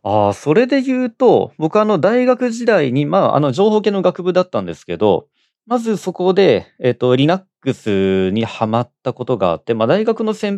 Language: Japanese